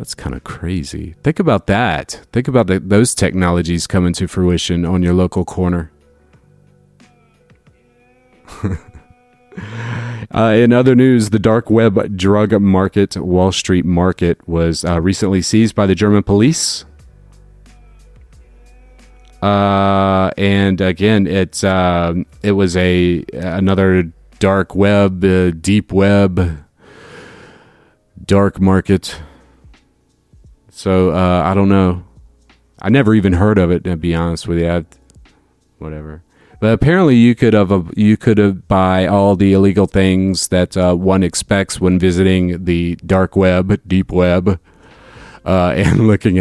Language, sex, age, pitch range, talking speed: English, male, 30-49, 85-100 Hz, 130 wpm